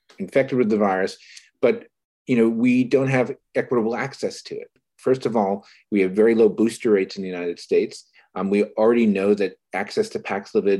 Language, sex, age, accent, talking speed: English, male, 40-59, American, 200 wpm